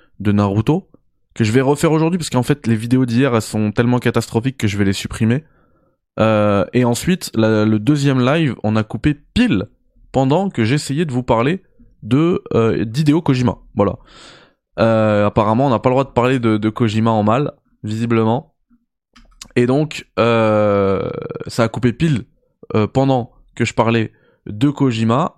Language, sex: French, male